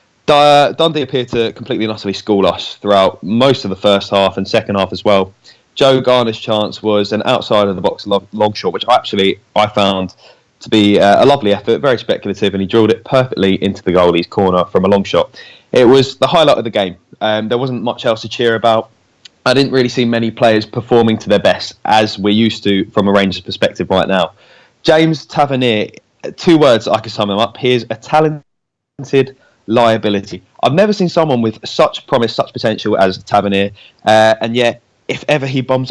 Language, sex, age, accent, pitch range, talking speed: English, male, 20-39, British, 105-130 Hz, 195 wpm